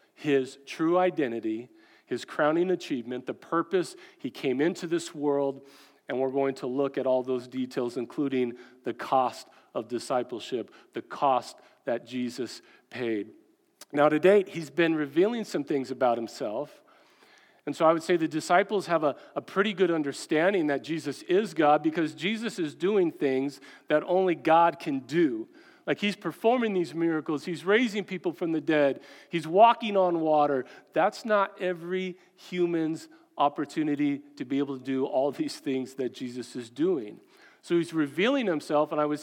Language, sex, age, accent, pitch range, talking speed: English, male, 40-59, American, 140-195 Hz, 165 wpm